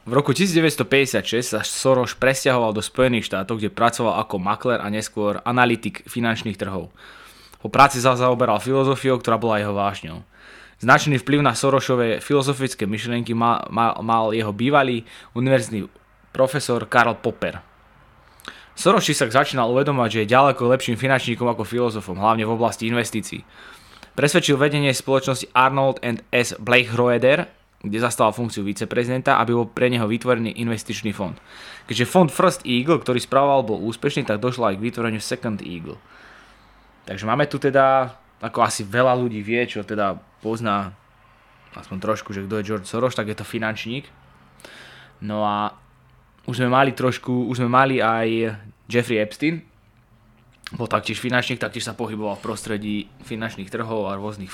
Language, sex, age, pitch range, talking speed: English, male, 20-39, 110-130 Hz, 150 wpm